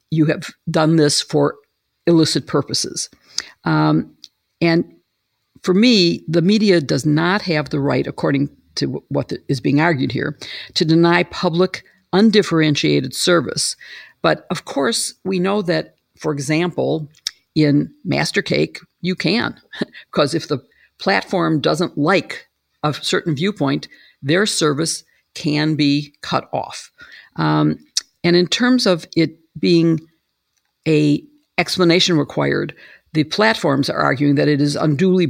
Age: 50-69